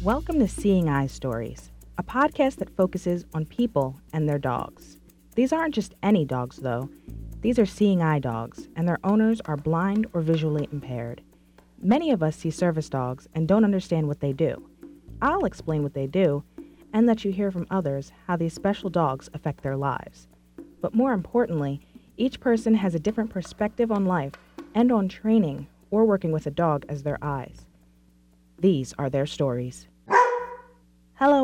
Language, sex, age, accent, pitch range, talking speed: English, female, 30-49, American, 140-210 Hz, 170 wpm